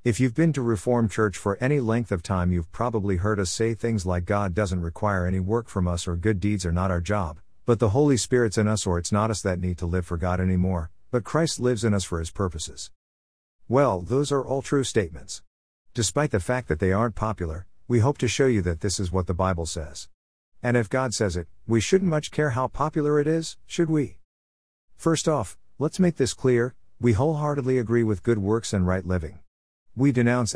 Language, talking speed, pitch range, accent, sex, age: English, 225 wpm, 90-125 Hz, American, male, 50-69